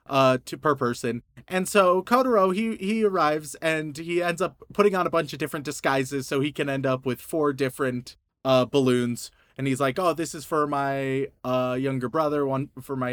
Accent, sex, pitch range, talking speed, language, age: American, male, 135-205 Hz, 205 wpm, English, 30-49